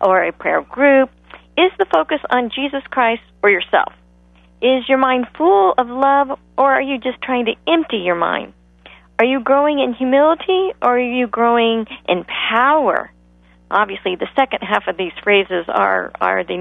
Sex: female